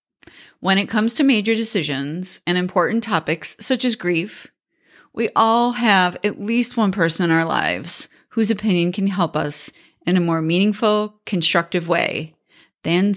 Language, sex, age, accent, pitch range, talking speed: English, female, 40-59, American, 170-225 Hz, 155 wpm